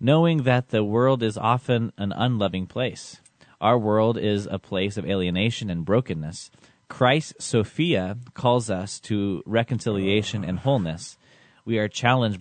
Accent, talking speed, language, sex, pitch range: American, 140 wpm, English, male, 95-120 Hz